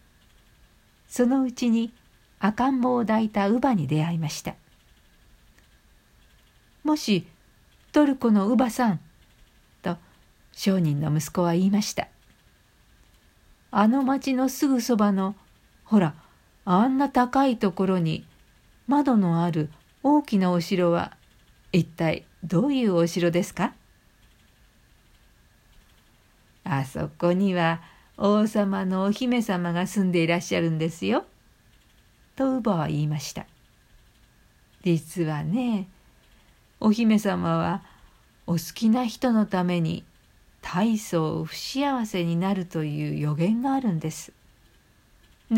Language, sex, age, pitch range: Japanese, female, 50-69, 160-225 Hz